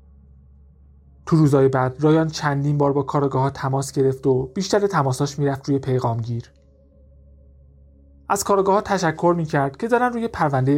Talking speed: 150 wpm